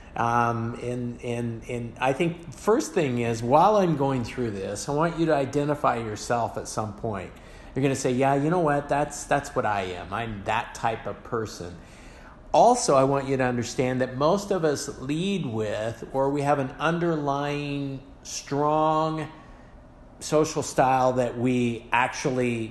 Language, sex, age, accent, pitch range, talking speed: English, male, 50-69, American, 115-145 Hz, 165 wpm